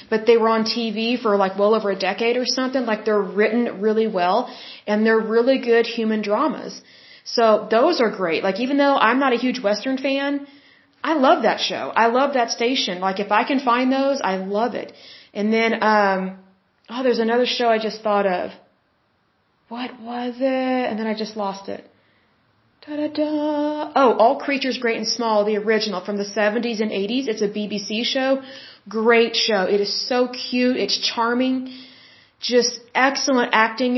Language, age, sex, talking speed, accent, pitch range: Bengali, 30-49, female, 180 wpm, American, 210-255 Hz